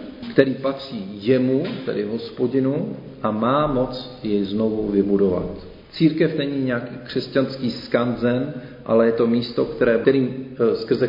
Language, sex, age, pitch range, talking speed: Czech, male, 40-59, 115-140 Hz, 125 wpm